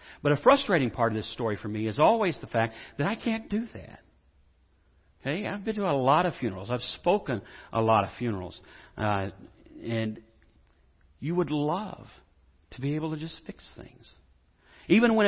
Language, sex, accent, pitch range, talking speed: English, male, American, 115-190 Hz, 180 wpm